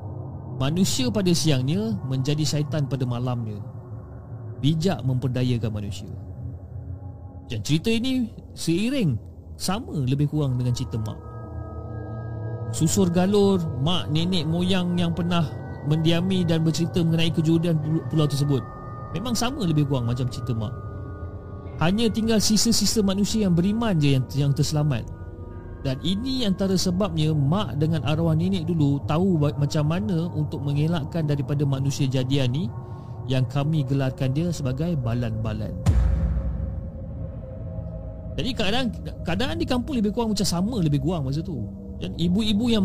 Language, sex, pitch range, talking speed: Malay, male, 115-175 Hz, 125 wpm